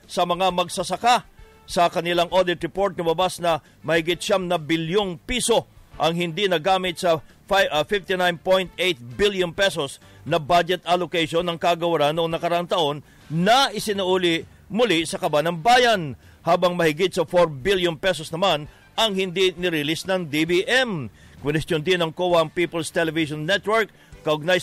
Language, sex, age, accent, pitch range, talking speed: English, male, 50-69, Filipino, 155-180 Hz, 130 wpm